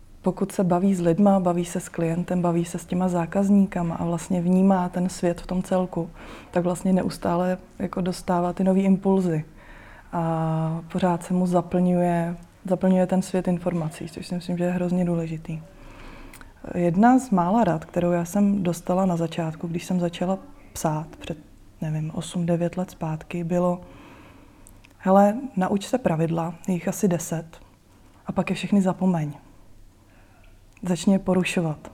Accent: native